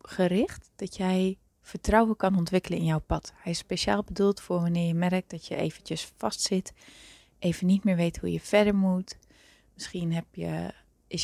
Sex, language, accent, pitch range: female, Dutch, Dutch, 175-200 Hz